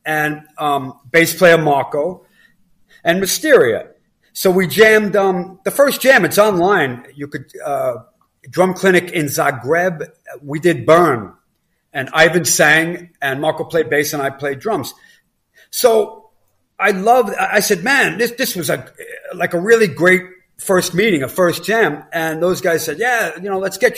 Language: English